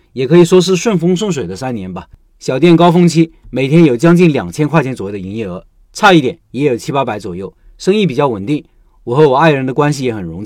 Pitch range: 120-165 Hz